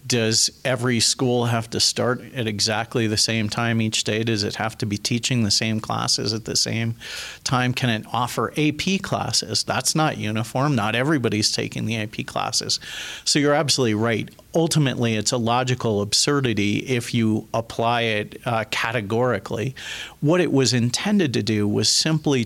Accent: American